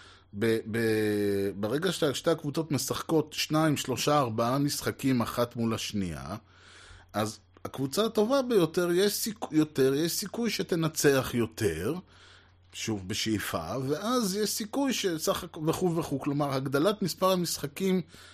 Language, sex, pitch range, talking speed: Hebrew, male, 110-155 Hz, 120 wpm